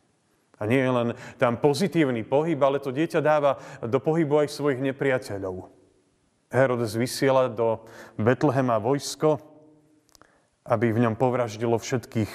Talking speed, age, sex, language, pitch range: 125 wpm, 30-49, male, Slovak, 115-150 Hz